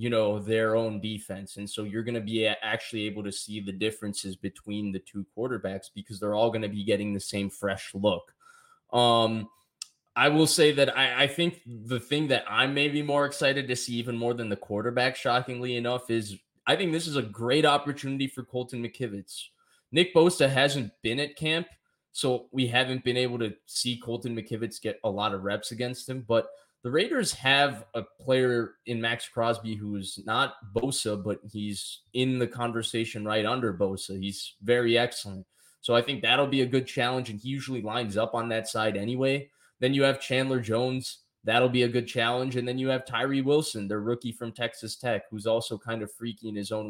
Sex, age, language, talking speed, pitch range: male, 20-39, English, 205 wpm, 110-130 Hz